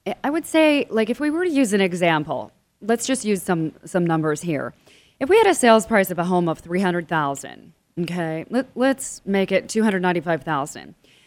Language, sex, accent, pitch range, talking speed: English, female, American, 175-230 Hz, 185 wpm